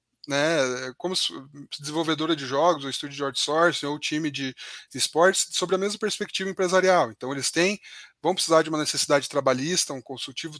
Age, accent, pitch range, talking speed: 20-39, Brazilian, 140-175 Hz, 170 wpm